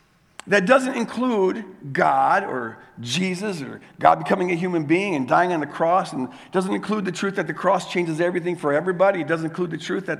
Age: 50-69